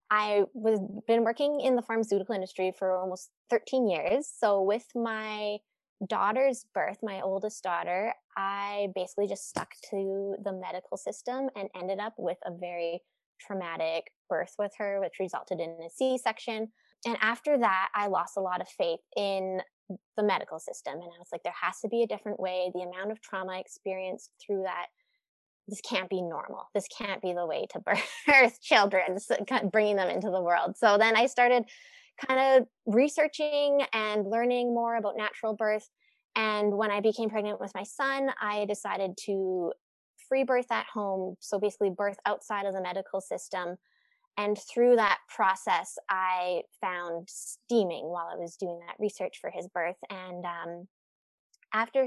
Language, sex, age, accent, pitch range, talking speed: English, female, 20-39, American, 185-230 Hz, 170 wpm